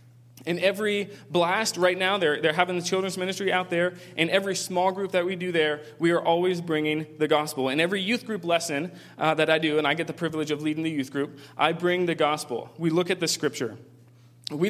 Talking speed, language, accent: 230 wpm, English, American